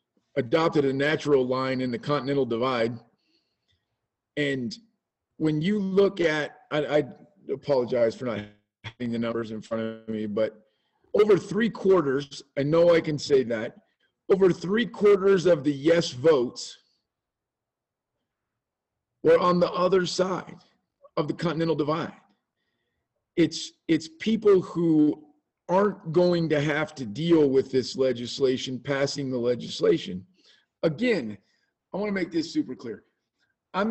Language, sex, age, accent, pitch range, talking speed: English, male, 40-59, American, 140-185 Hz, 135 wpm